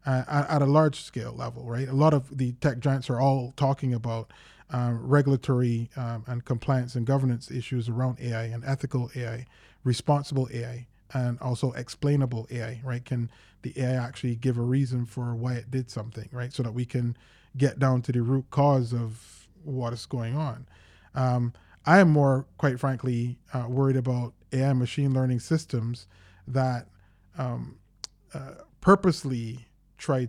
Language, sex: English, male